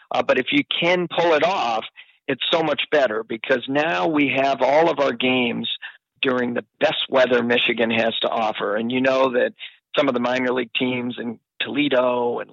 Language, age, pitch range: English, 50-69, 120-145 Hz